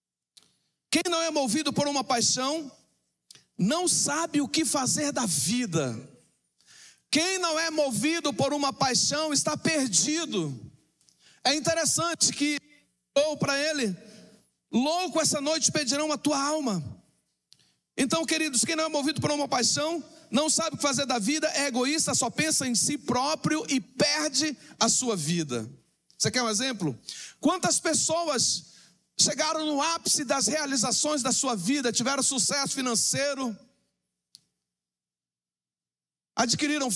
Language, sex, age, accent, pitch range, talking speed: Portuguese, male, 40-59, Brazilian, 200-300 Hz, 135 wpm